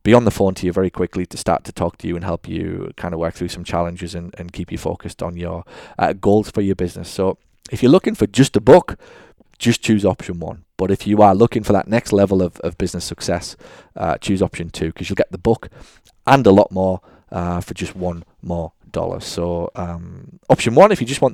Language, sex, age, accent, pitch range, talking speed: English, male, 20-39, British, 90-100 Hz, 240 wpm